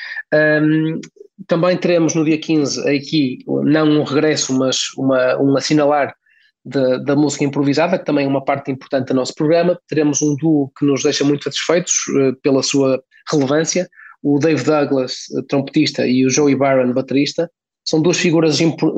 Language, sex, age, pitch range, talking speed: Portuguese, male, 20-39, 135-160 Hz, 150 wpm